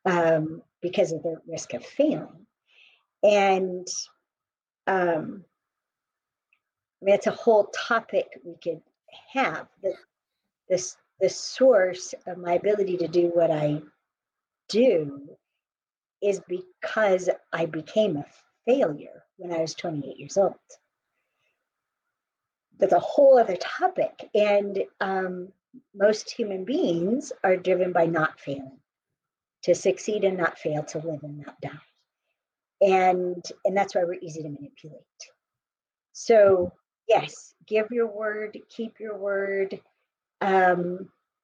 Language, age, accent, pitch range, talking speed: English, 50-69, American, 170-210 Hz, 120 wpm